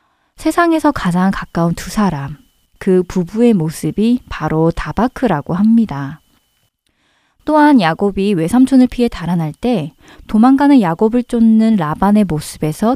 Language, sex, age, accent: Korean, female, 20-39, native